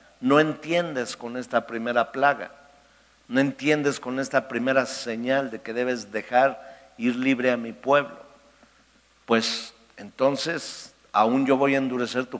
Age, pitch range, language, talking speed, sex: 50-69, 125-150 Hz, Spanish, 140 wpm, male